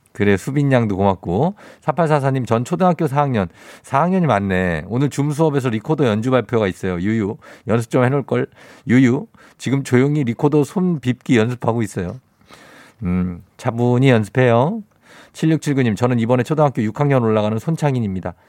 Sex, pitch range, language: male, 105-145 Hz, Korean